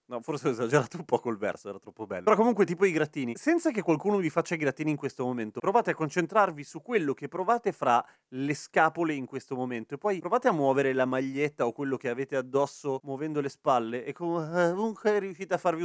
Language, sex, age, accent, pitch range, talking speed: Italian, male, 30-49, native, 135-185 Hz, 225 wpm